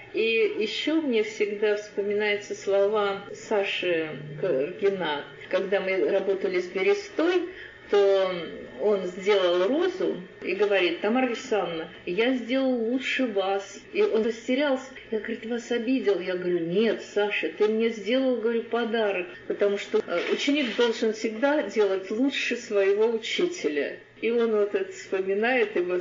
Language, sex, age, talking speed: Russian, female, 30-49, 130 wpm